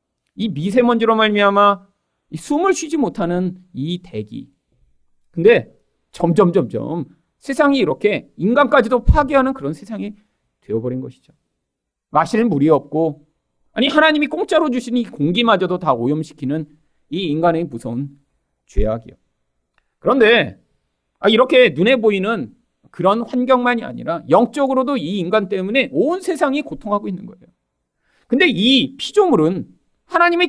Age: 40-59